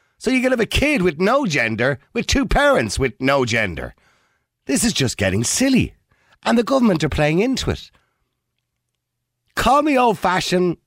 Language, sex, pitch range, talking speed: English, male, 95-140 Hz, 165 wpm